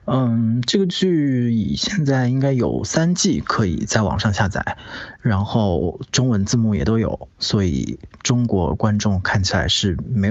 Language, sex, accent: Chinese, male, native